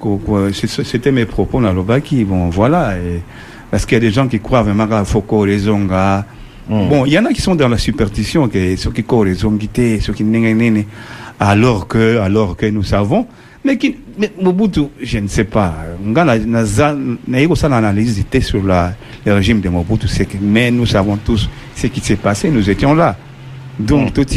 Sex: male